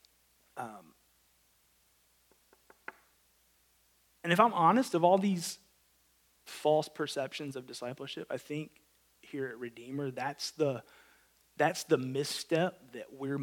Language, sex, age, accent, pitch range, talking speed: English, male, 30-49, American, 120-180 Hz, 105 wpm